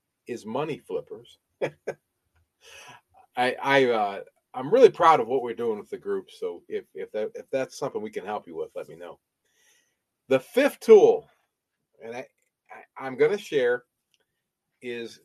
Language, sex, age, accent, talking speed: English, male, 40-59, American, 160 wpm